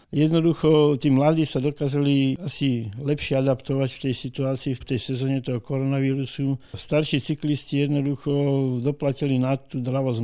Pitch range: 125-135 Hz